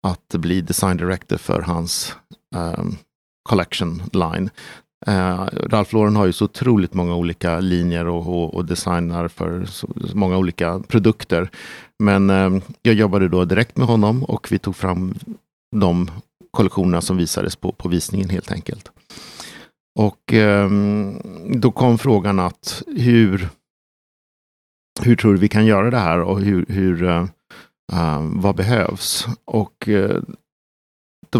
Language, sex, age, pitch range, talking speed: Swedish, male, 50-69, 90-110 Hz, 140 wpm